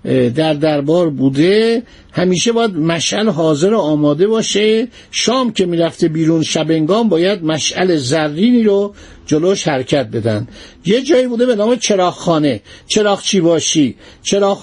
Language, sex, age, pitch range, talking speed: Persian, male, 50-69, 165-215 Hz, 130 wpm